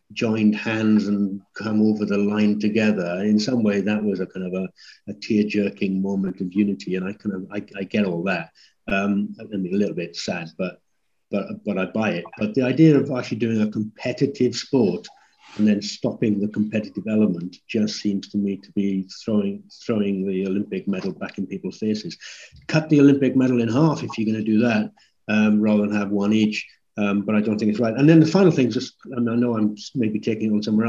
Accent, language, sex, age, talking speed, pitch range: British, English, male, 60-79, 225 wpm, 105-125 Hz